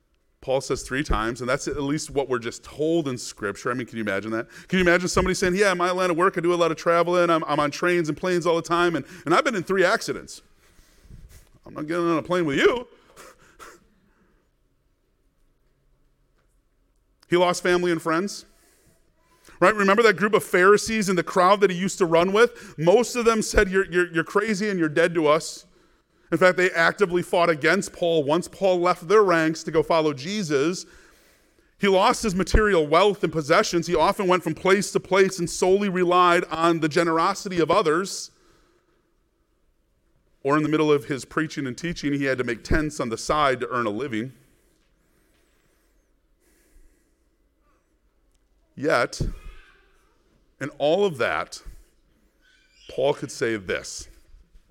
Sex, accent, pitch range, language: male, American, 155-190 Hz, English